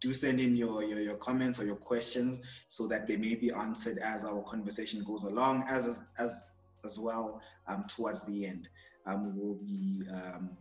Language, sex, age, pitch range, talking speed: English, male, 20-39, 100-120 Hz, 190 wpm